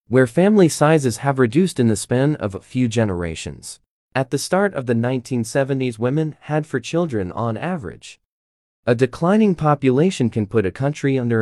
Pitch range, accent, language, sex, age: 110-160 Hz, American, Chinese, male, 30-49